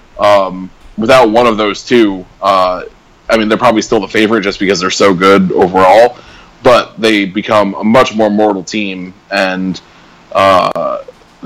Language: English